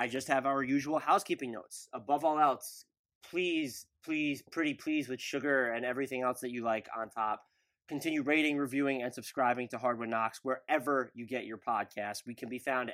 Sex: male